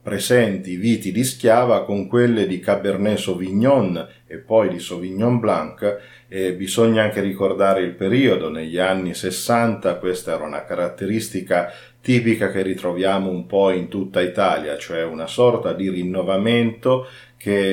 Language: Italian